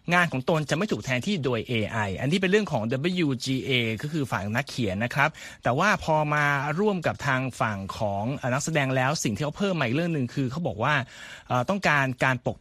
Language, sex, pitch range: Thai, male, 125-165 Hz